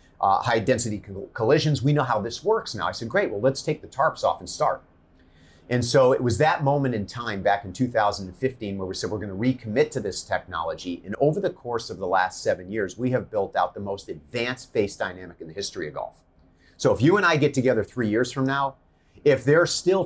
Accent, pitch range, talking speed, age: American, 100-130 Hz, 235 wpm, 30-49